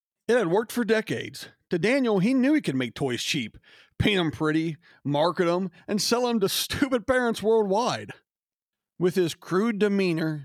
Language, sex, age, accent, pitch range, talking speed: English, male, 40-59, American, 140-195 Hz, 170 wpm